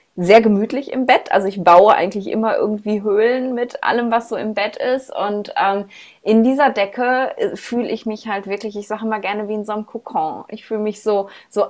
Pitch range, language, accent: 200-245 Hz, German, German